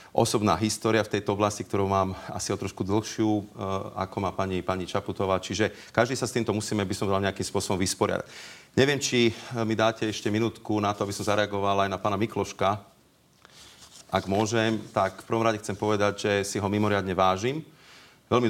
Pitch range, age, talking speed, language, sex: 95-110 Hz, 40-59, 185 wpm, Slovak, male